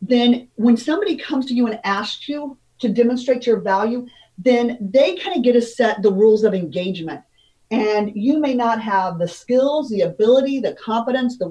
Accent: American